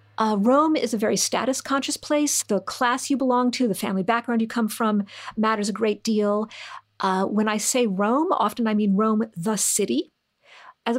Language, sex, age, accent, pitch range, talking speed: English, female, 50-69, American, 200-245 Hz, 190 wpm